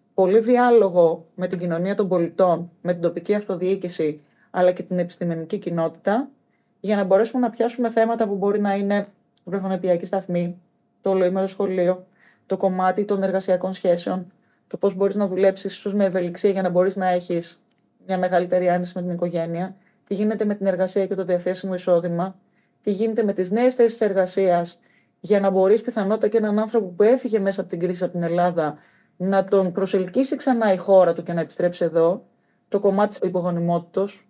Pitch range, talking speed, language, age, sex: 175-210 Hz, 175 wpm, Greek, 30-49, female